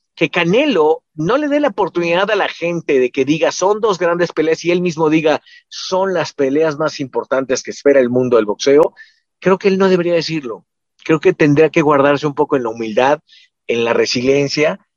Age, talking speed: 50-69, 205 wpm